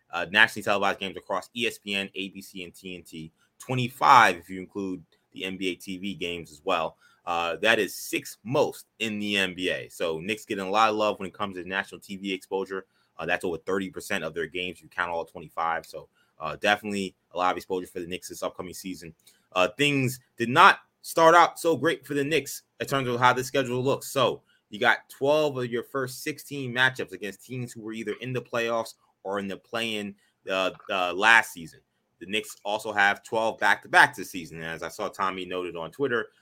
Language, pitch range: English, 90-120 Hz